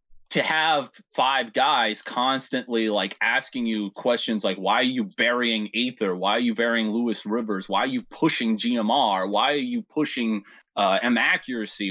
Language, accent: English, American